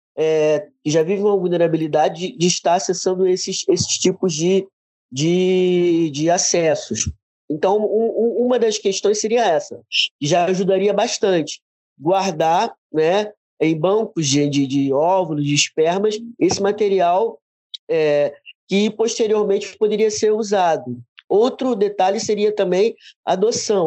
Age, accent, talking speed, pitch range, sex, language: 20-39, Brazilian, 135 wpm, 165-205 Hz, male, Portuguese